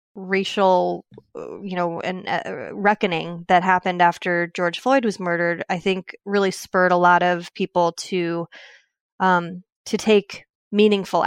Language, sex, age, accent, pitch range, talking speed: English, female, 20-39, American, 180-215 Hz, 140 wpm